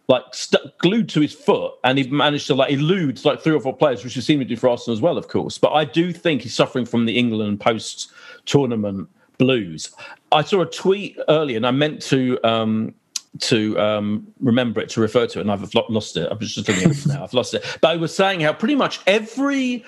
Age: 40-59